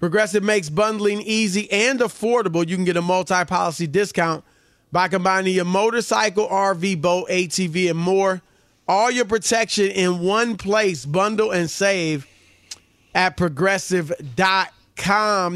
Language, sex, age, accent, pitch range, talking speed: English, male, 30-49, American, 155-190 Hz, 125 wpm